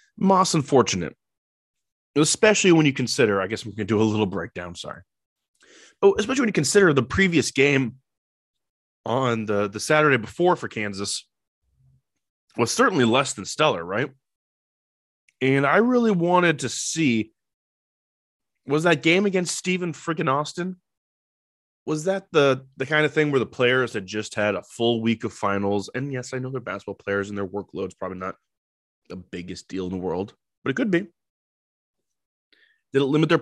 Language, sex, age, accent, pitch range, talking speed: English, male, 20-39, American, 105-145 Hz, 170 wpm